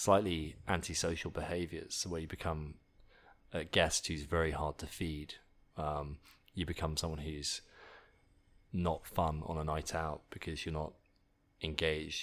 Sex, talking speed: male, 135 wpm